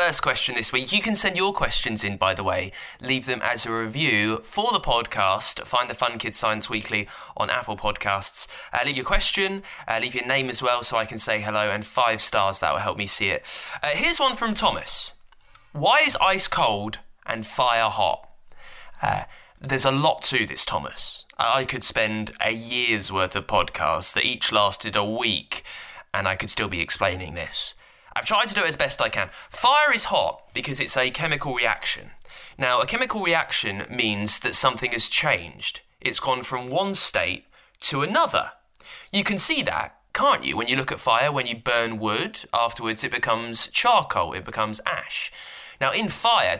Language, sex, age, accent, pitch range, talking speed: English, male, 20-39, British, 105-135 Hz, 195 wpm